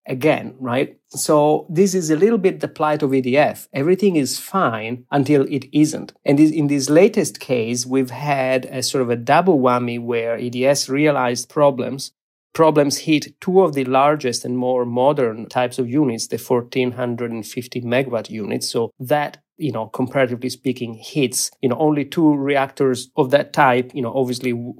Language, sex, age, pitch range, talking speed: English, male, 30-49, 125-150 Hz, 165 wpm